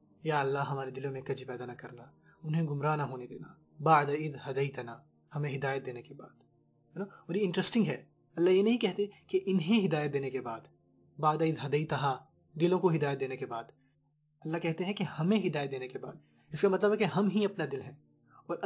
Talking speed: 220 wpm